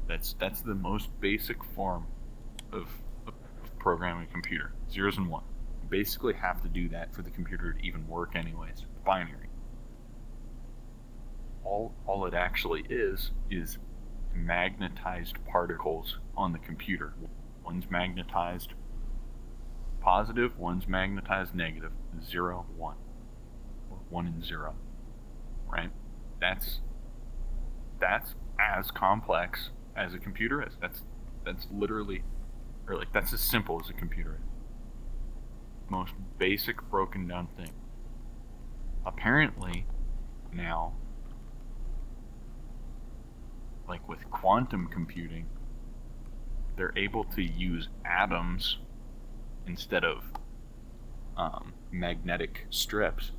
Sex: male